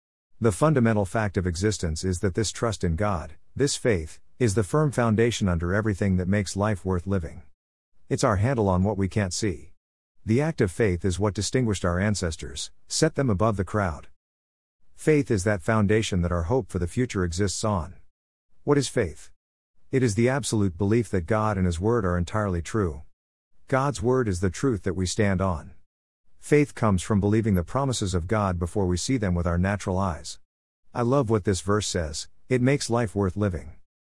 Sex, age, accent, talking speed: male, 50-69, American, 195 wpm